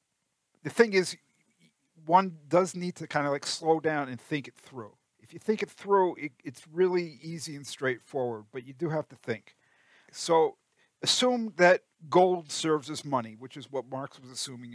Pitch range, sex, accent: 140-185 Hz, male, American